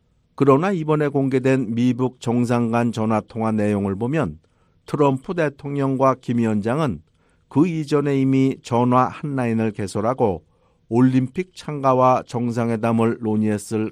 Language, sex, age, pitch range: Korean, male, 50-69, 115-140 Hz